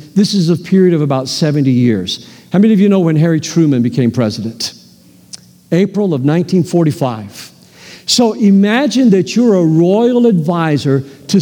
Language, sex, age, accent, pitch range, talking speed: English, male, 50-69, American, 155-210 Hz, 150 wpm